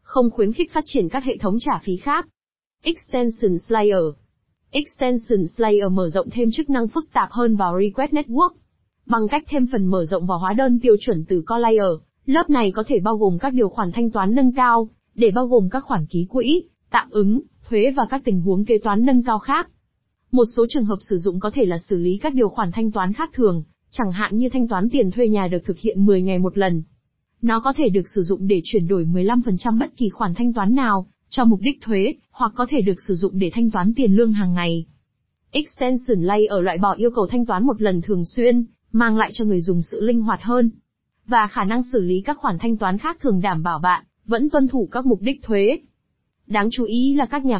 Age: 20-39